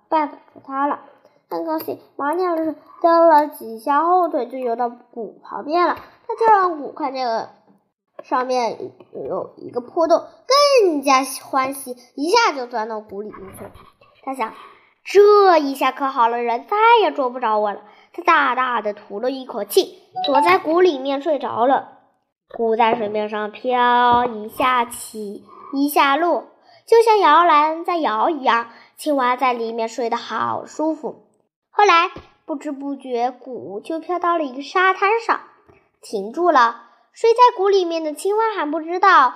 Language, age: Chinese, 10-29